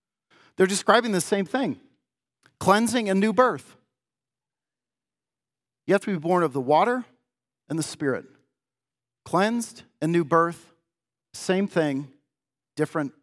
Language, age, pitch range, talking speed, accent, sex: English, 40-59, 130-175 Hz, 120 wpm, American, male